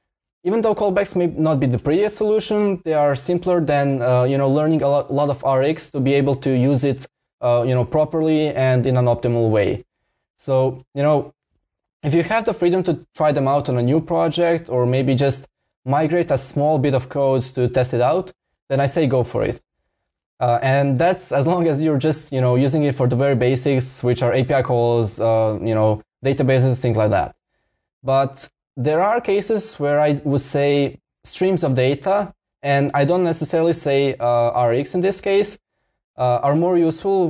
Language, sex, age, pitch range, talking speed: English, male, 20-39, 130-160 Hz, 200 wpm